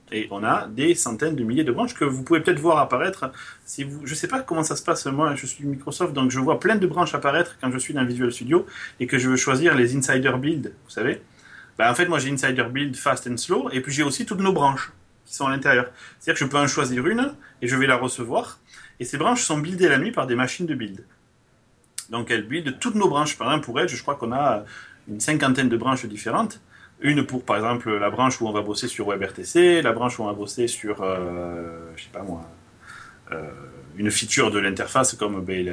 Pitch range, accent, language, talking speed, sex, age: 120-155 Hz, French, French, 245 wpm, male, 30-49